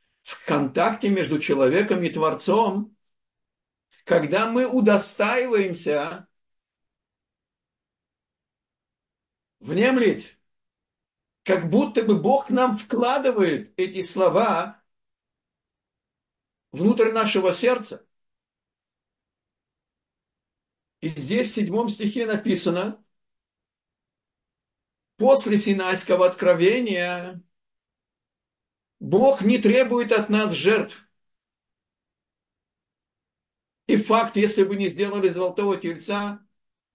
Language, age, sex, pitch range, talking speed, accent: Russian, 50-69, male, 185-230 Hz, 70 wpm, native